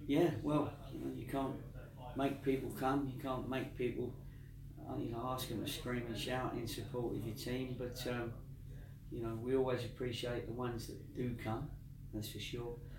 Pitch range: 115-130 Hz